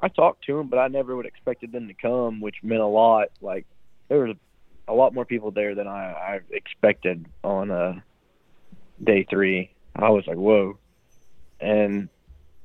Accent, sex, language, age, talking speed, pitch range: American, male, English, 30-49, 180 wpm, 95-120 Hz